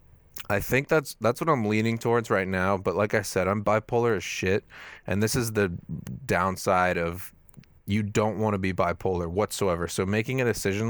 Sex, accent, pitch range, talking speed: male, American, 90-110 Hz, 195 wpm